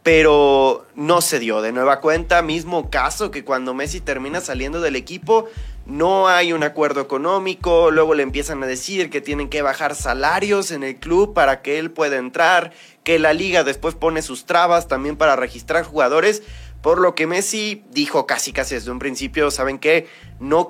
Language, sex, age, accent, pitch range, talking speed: Spanish, male, 30-49, Mexican, 125-165 Hz, 185 wpm